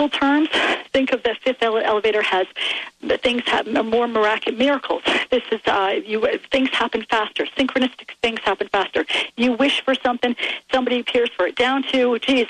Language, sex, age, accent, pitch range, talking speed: English, female, 40-59, American, 205-260 Hz, 165 wpm